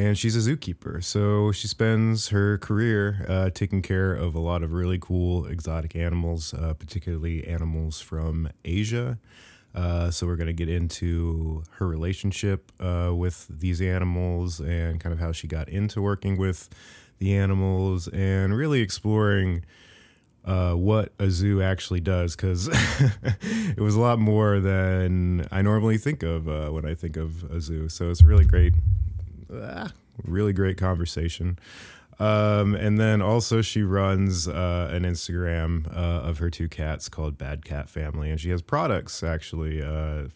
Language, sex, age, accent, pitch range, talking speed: English, male, 30-49, American, 80-100 Hz, 160 wpm